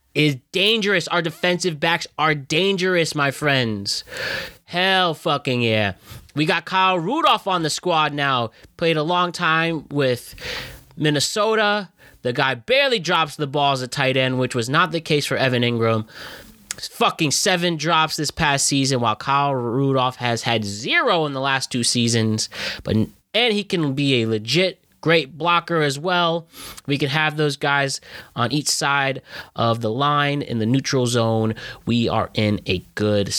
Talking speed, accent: 165 wpm, American